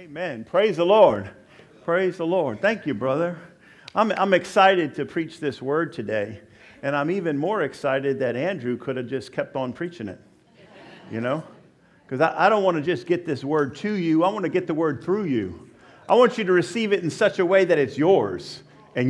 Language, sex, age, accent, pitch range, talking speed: English, male, 50-69, American, 125-175 Hz, 215 wpm